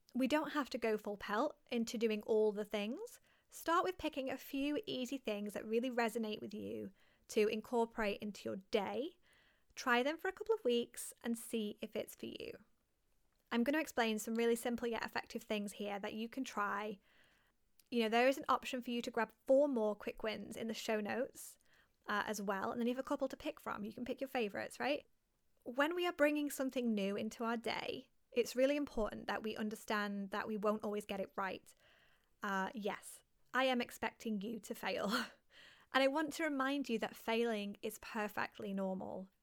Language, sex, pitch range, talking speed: English, female, 215-260 Hz, 200 wpm